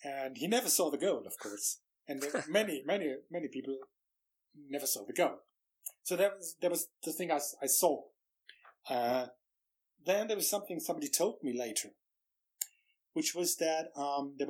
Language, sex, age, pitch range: English, male, 30-49, 125-170 Hz